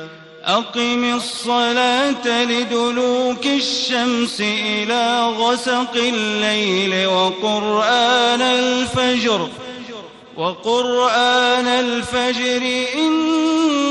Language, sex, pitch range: Arabic, male, 200-255 Hz